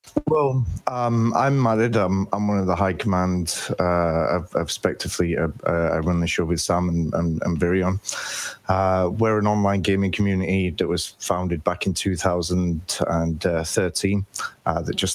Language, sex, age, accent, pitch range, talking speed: English, male, 30-49, British, 85-100 Hz, 160 wpm